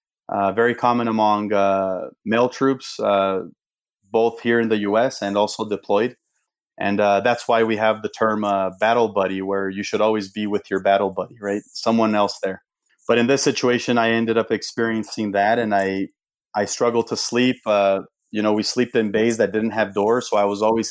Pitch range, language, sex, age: 105-120 Hz, English, male, 30-49